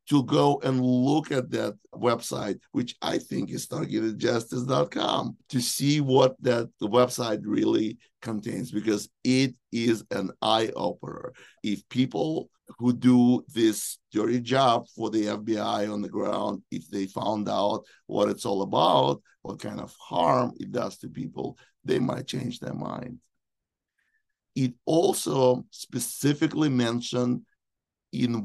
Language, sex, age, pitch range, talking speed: English, male, 50-69, 110-135 Hz, 135 wpm